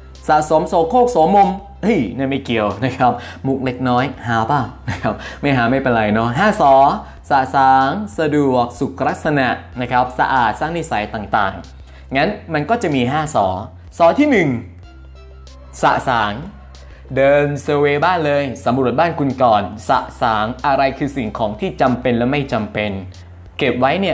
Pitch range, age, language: 115-150 Hz, 20-39, Thai